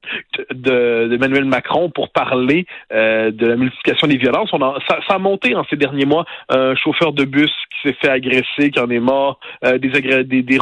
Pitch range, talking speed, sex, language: 125-150 Hz, 220 wpm, male, French